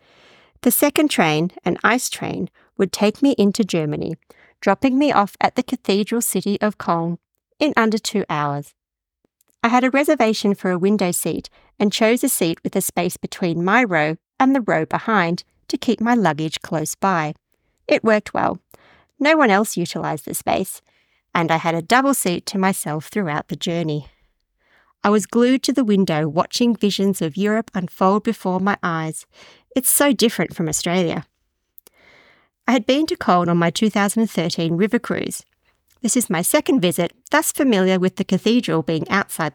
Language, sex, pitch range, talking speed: English, female, 170-240 Hz, 170 wpm